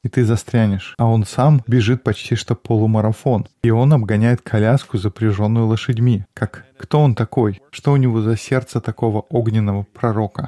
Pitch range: 110-130 Hz